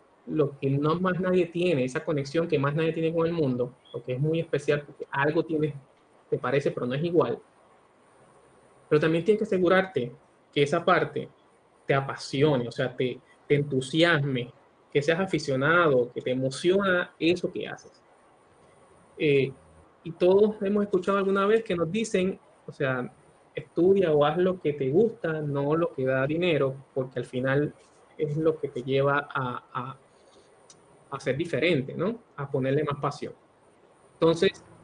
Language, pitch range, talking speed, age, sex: Spanish, 140-185 Hz, 165 wpm, 20-39, male